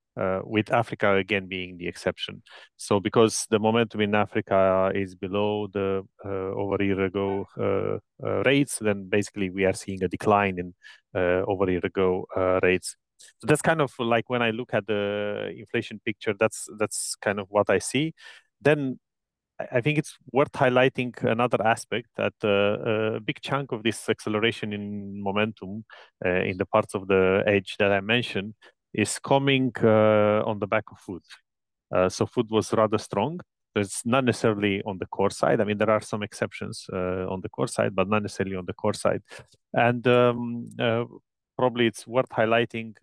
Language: English